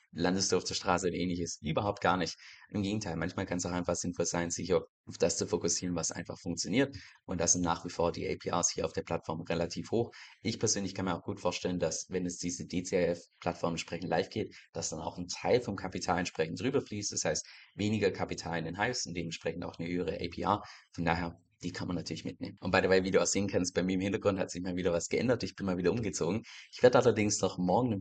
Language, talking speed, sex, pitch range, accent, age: German, 240 wpm, male, 85-95 Hz, German, 20-39